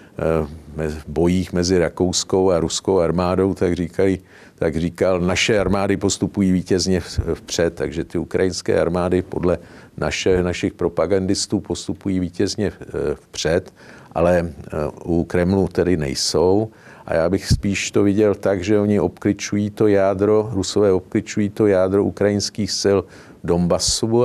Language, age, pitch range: Czech, 50-69, 90-105 Hz